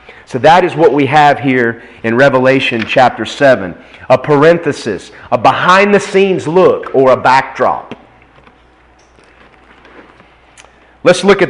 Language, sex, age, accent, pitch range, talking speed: English, male, 30-49, American, 115-155 Hz, 115 wpm